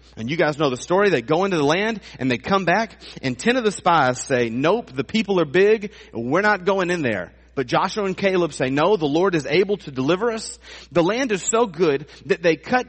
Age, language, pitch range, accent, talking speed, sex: 40-59, English, 135-195 Hz, American, 240 wpm, male